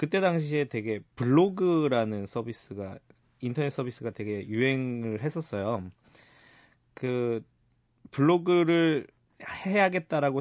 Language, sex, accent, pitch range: Korean, male, native, 115-155 Hz